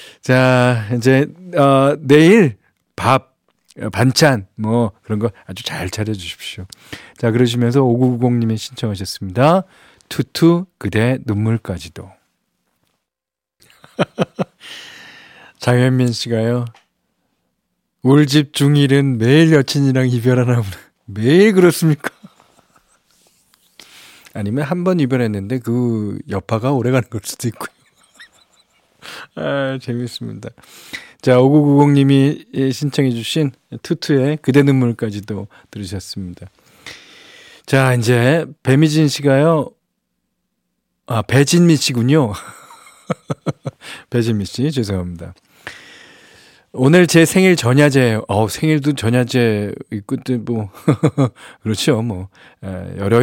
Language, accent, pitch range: Korean, native, 110-145 Hz